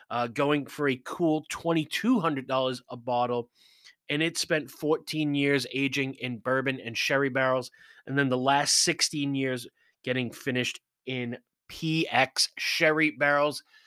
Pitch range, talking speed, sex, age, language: 125-160 Hz, 135 wpm, male, 20-39, English